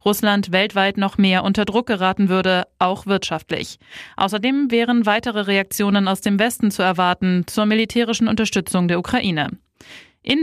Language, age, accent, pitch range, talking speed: German, 20-39, German, 190-225 Hz, 145 wpm